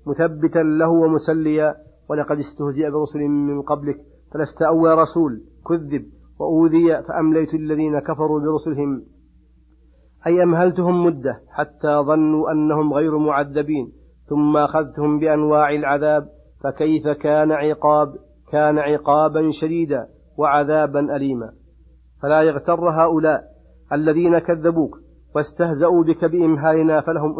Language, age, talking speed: Arabic, 40-59, 100 wpm